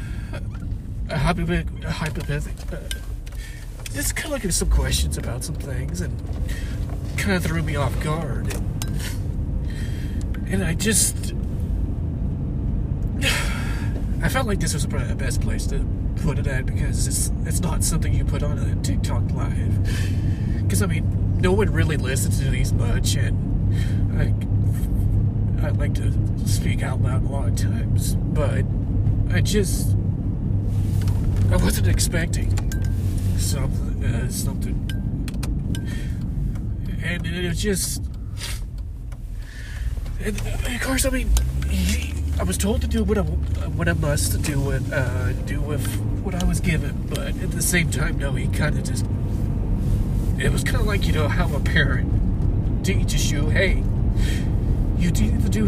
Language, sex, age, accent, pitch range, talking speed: English, male, 30-49, American, 95-105 Hz, 140 wpm